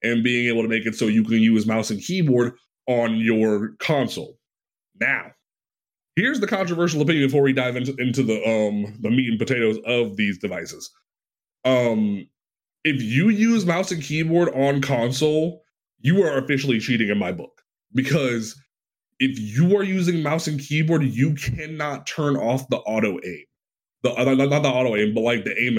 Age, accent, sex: 20-39, American, male